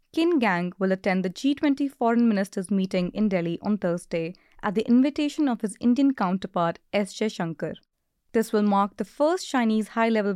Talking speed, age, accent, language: 170 wpm, 20-39, Indian, English